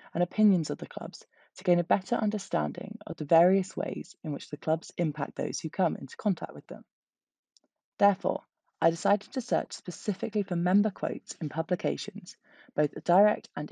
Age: 20-39